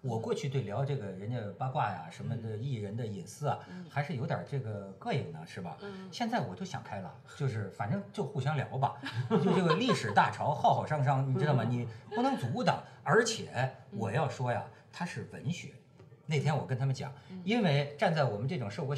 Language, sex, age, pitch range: Chinese, male, 50-69, 115-160 Hz